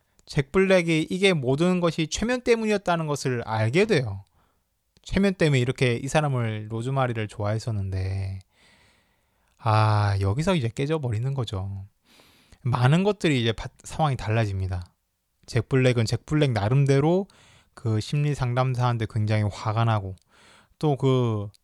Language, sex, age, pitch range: Korean, male, 20-39, 110-150 Hz